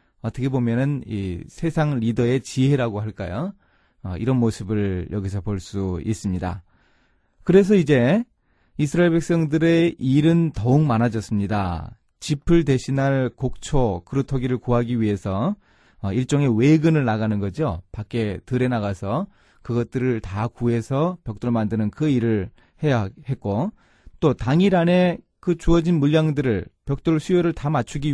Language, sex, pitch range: Korean, male, 110-160 Hz